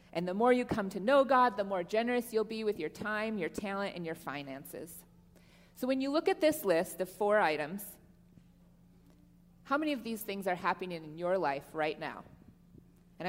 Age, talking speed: 30-49, 200 wpm